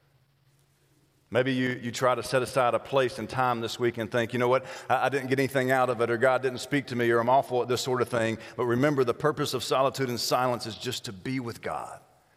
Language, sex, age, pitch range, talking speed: English, male, 40-59, 90-120 Hz, 260 wpm